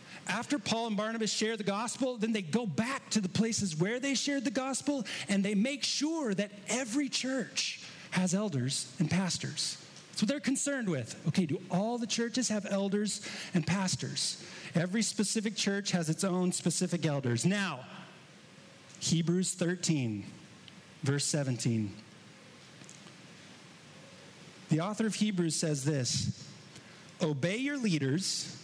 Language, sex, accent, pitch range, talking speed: English, male, American, 155-210 Hz, 140 wpm